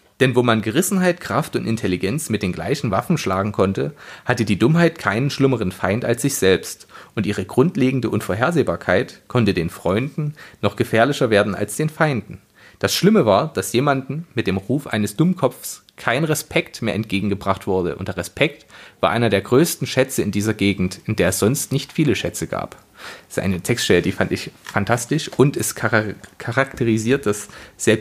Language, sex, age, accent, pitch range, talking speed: German, male, 30-49, German, 105-135 Hz, 175 wpm